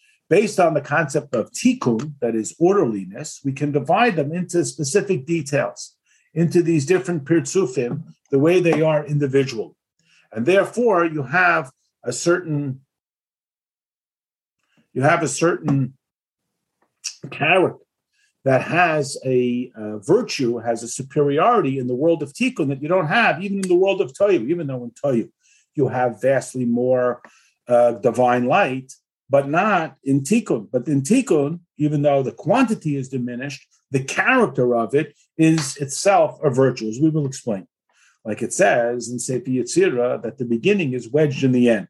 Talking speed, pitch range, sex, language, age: 150 wpm, 130-175 Hz, male, English, 50-69